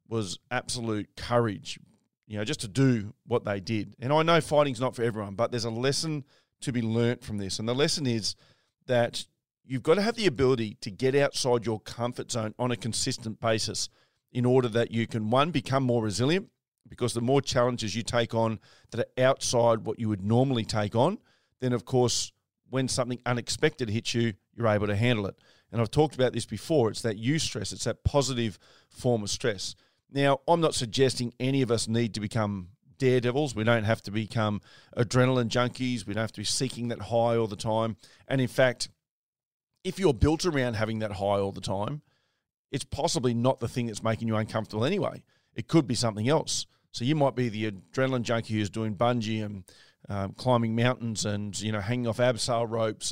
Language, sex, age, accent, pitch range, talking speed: English, male, 40-59, Australian, 110-130 Hz, 205 wpm